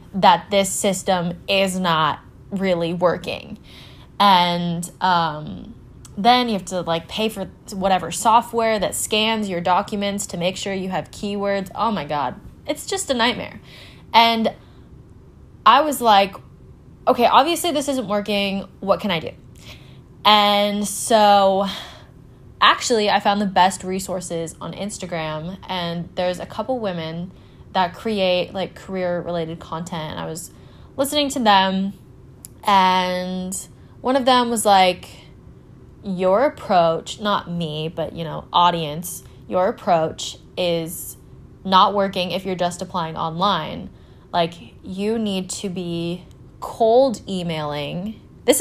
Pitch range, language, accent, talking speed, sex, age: 175-205 Hz, English, American, 130 wpm, female, 20-39